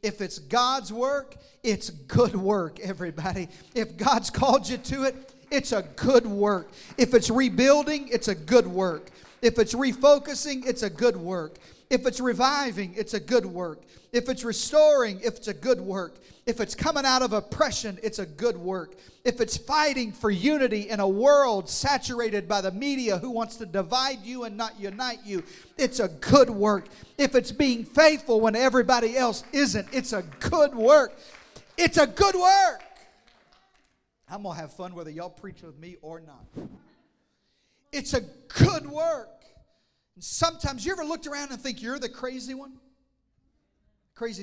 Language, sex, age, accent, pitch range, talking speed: English, male, 40-59, American, 205-275 Hz, 170 wpm